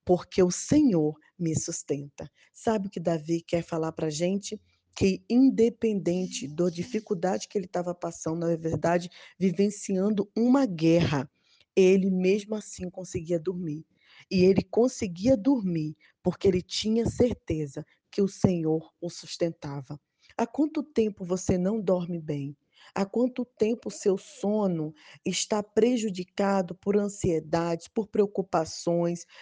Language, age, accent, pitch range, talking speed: Portuguese, 20-39, Brazilian, 165-210 Hz, 130 wpm